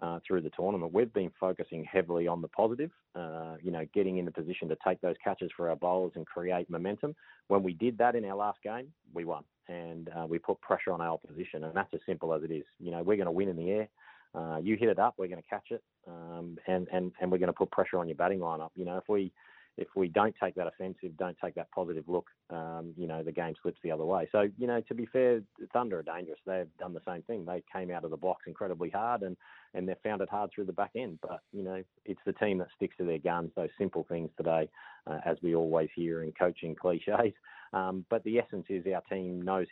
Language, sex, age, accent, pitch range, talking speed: English, male, 30-49, Australian, 85-95 Hz, 265 wpm